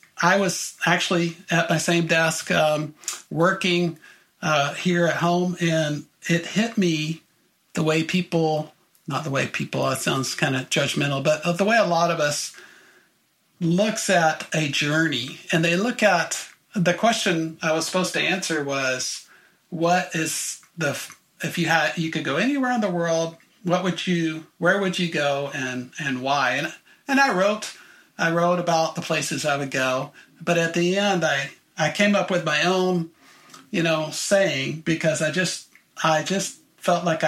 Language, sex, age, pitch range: English, male, 50-69, 155-180 Hz